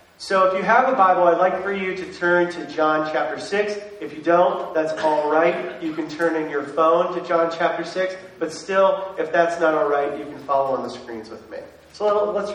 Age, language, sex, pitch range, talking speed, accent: 40-59, English, male, 135-175 Hz, 235 wpm, American